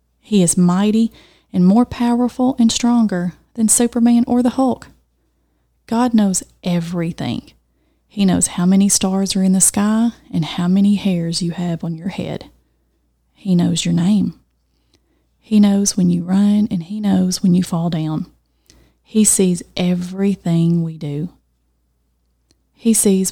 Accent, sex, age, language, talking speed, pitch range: American, female, 30-49, English, 145 wpm, 155-210 Hz